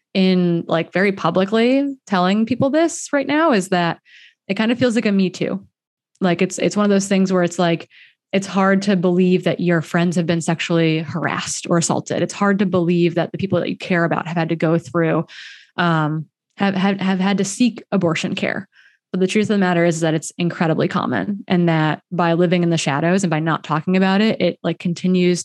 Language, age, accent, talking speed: English, 20-39, American, 220 wpm